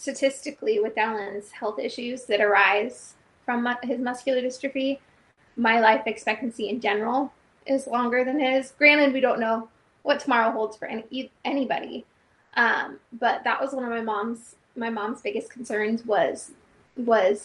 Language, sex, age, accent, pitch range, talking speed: English, female, 20-39, American, 215-255 Hz, 155 wpm